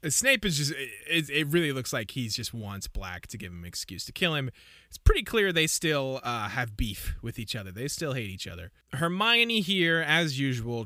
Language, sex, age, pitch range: English, male, 20-39, 95-150 Hz